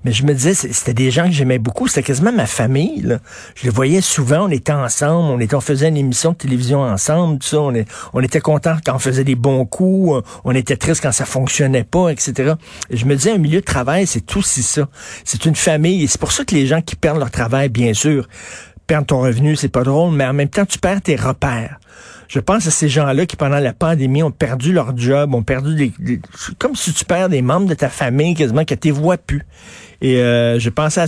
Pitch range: 125-160 Hz